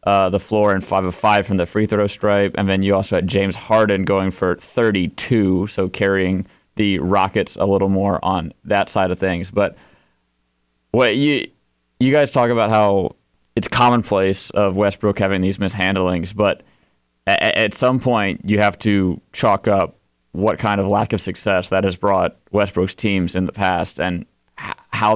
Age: 20-39